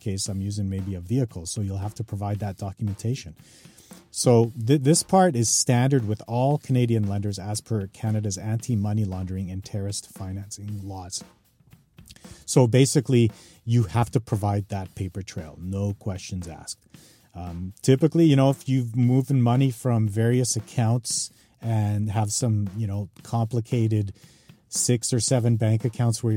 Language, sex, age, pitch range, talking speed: English, male, 40-59, 105-130 Hz, 150 wpm